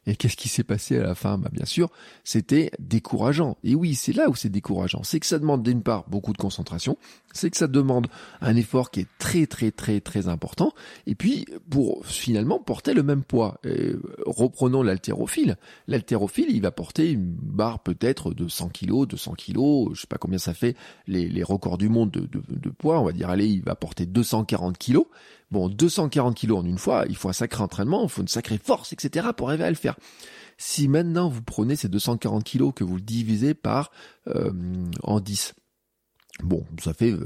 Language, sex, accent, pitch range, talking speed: French, male, French, 95-135 Hz, 210 wpm